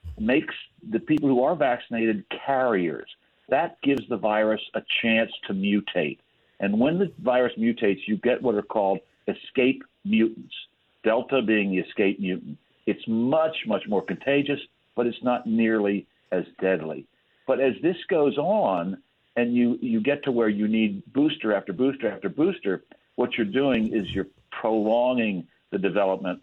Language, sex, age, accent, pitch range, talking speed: English, male, 60-79, American, 95-125 Hz, 155 wpm